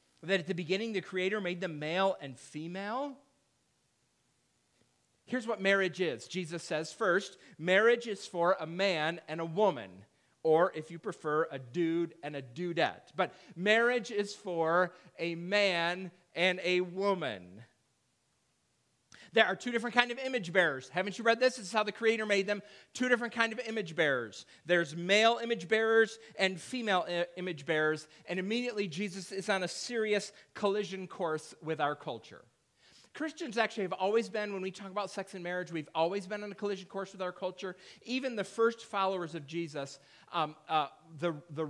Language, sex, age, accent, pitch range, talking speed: English, male, 40-59, American, 155-200 Hz, 175 wpm